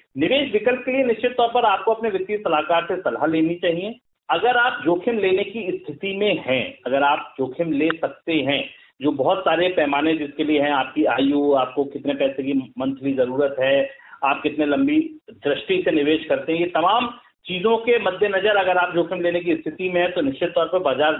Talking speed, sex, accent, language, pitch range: 205 wpm, male, native, Hindi, 155-235 Hz